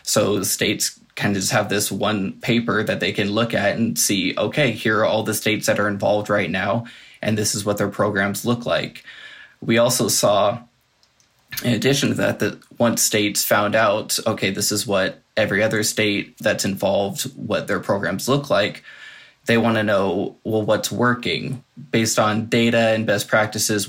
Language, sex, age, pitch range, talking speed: English, male, 20-39, 105-115 Hz, 185 wpm